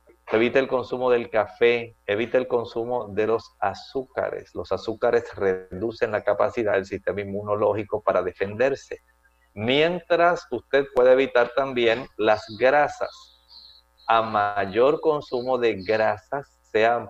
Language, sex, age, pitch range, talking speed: Spanish, male, 50-69, 105-145 Hz, 120 wpm